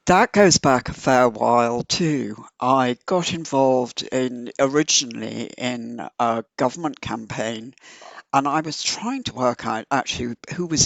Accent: British